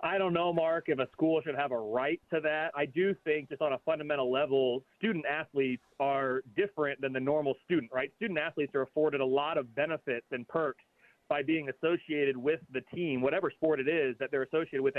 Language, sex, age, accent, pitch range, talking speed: English, male, 30-49, American, 140-180 Hz, 215 wpm